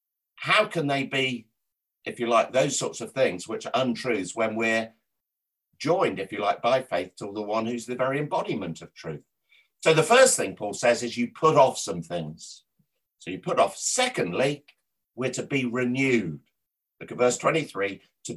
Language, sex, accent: English, male, British